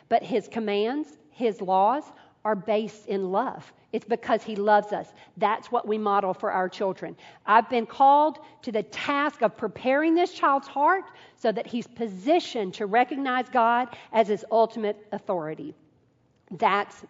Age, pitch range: 50-69, 200-245 Hz